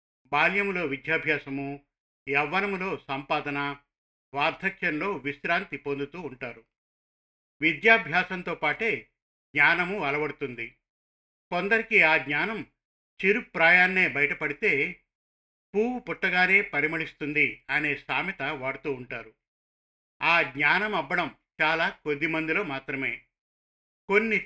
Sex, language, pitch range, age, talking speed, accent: male, Telugu, 140-185 Hz, 50-69, 80 wpm, native